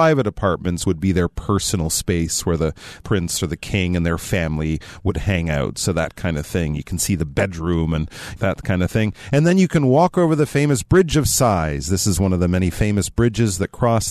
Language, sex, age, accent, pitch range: Chinese, male, 40-59, American, 95-130 Hz